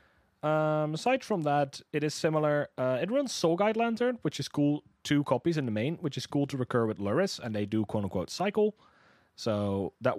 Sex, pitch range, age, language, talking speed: male, 95-155 Hz, 30-49, English, 210 wpm